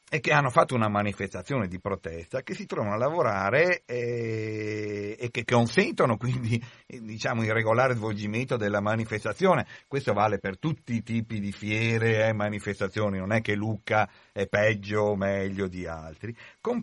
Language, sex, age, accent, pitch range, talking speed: Italian, male, 50-69, native, 105-130 Hz, 165 wpm